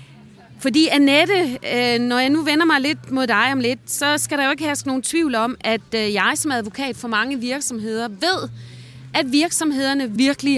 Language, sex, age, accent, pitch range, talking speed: Danish, female, 30-49, native, 230-290 Hz, 180 wpm